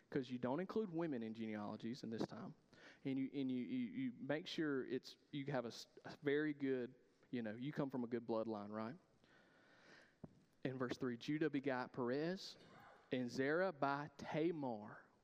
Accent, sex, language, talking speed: American, male, English, 170 wpm